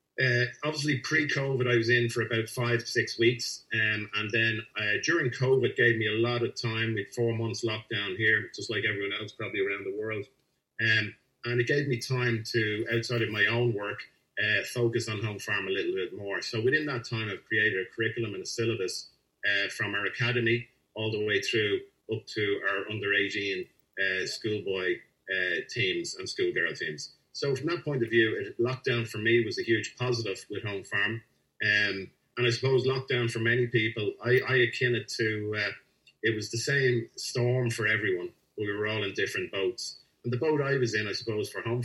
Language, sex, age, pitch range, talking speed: English, male, 30-49, 110-140 Hz, 205 wpm